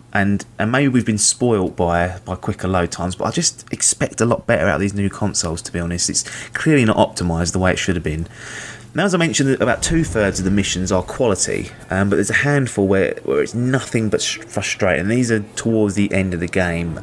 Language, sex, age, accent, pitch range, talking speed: English, male, 20-39, British, 95-120 Hz, 235 wpm